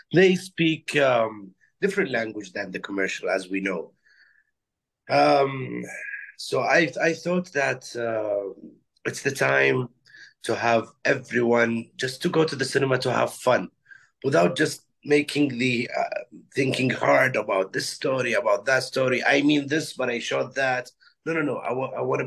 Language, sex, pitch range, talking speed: English, male, 115-170 Hz, 160 wpm